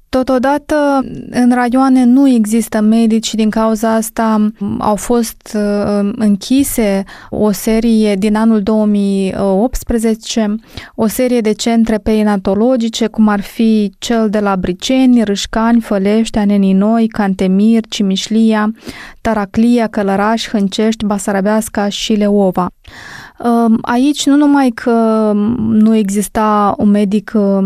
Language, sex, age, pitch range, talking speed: Romanian, female, 20-39, 205-235 Hz, 105 wpm